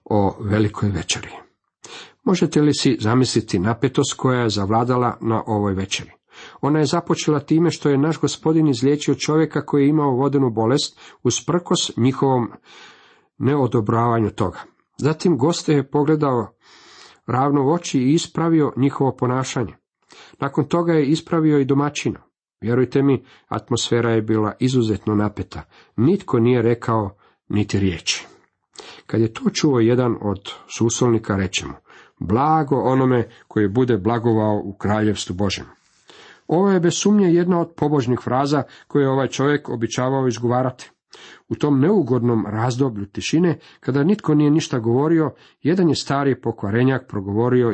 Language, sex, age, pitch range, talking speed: Croatian, male, 50-69, 115-145 Hz, 135 wpm